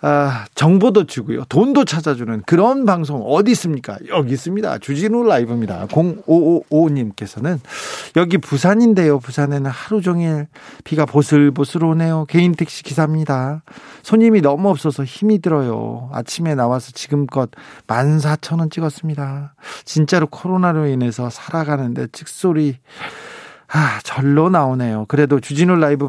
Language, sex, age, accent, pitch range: Korean, male, 40-59, native, 130-165 Hz